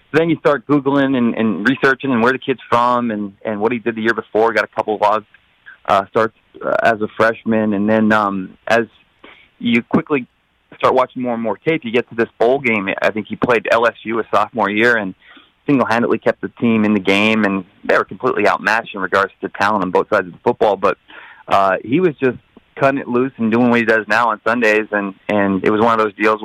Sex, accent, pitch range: male, American, 105-125 Hz